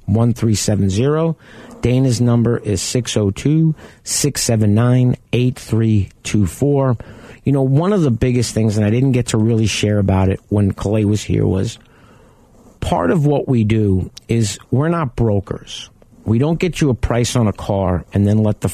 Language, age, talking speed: English, 50-69, 155 wpm